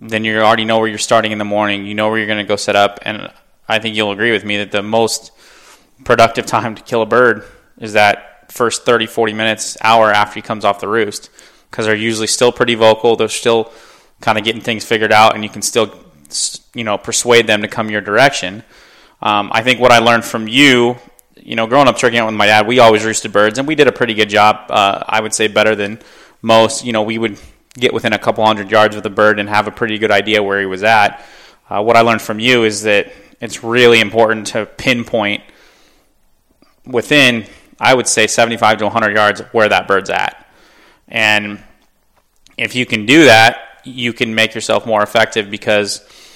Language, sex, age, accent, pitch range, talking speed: English, male, 20-39, American, 105-115 Hz, 220 wpm